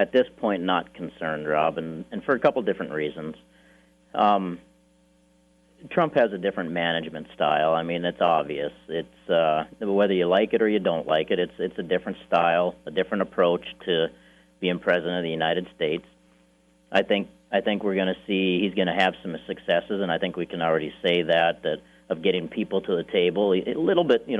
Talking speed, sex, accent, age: 200 wpm, male, American, 40-59